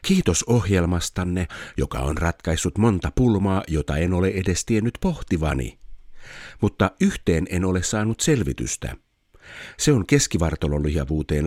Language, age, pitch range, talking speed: Finnish, 50-69, 80-115 Hz, 115 wpm